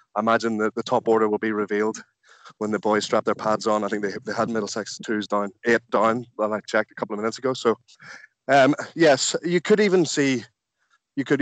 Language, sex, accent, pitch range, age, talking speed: English, male, Irish, 110-125 Hz, 20-39, 220 wpm